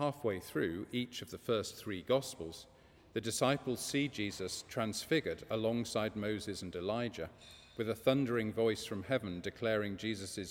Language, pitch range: English, 95-115 Hz